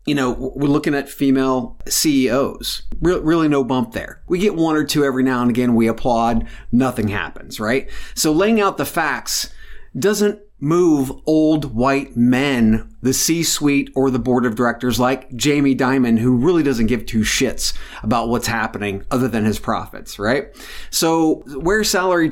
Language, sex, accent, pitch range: English, male, American, 120-155 Hz